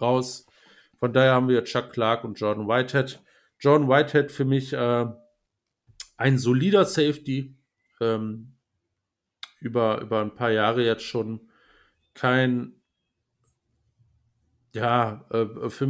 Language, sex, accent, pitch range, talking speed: German, male, German, 110-130 Hz, 115 wpm